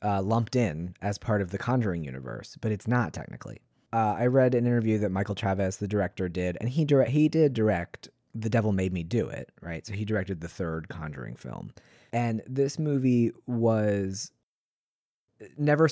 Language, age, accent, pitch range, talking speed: English, 30-49, American, 95-120 Hz, 185 wpm